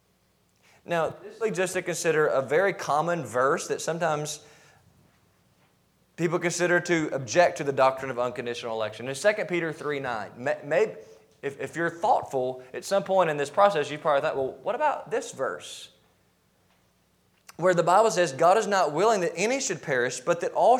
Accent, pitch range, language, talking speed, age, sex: American, 150-220 Hz, English, 165 wpm, 20-39, male